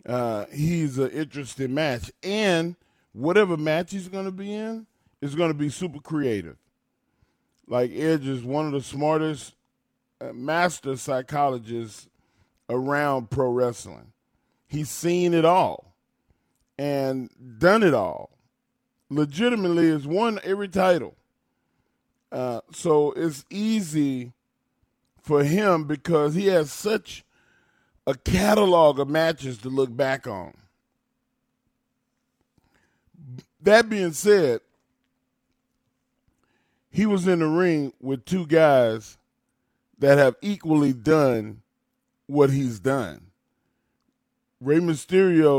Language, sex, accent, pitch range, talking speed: English, male, American, 130-170 Hz, 110 wpm